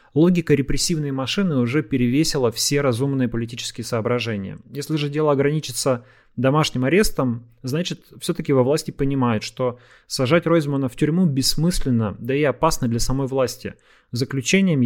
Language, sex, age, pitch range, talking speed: Russian, male, 30-49, 120-145 Hz, 135 wpm